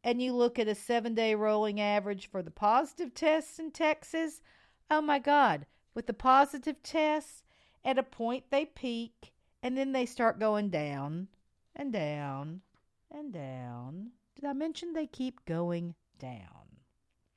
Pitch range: 185-295 Hz